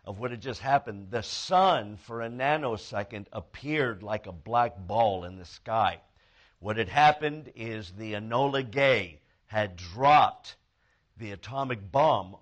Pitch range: 105-140 Hz